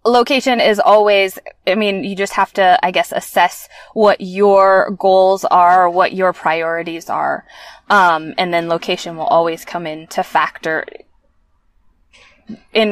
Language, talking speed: English, 145 wpm